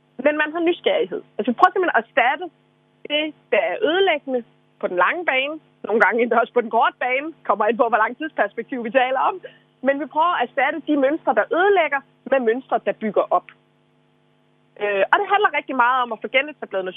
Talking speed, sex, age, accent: 210 wpm, female, 30-49, native